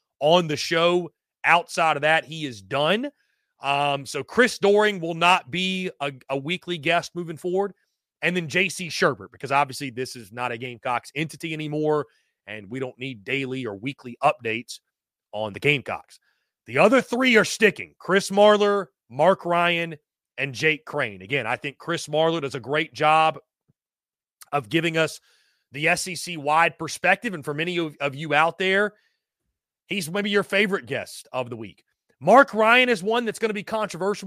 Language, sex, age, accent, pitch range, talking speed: English, male, 30-49, American, 145-195 Hz, 170 wpm